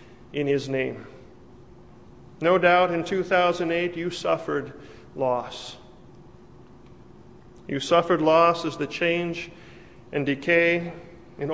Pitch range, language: 145-180 Hz, English